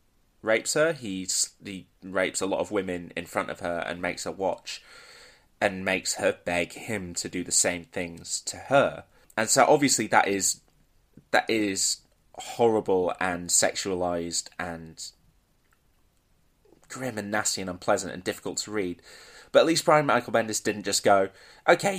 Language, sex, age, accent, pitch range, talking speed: English, male, 20-39, British, 85-105 Hz, 160 wpm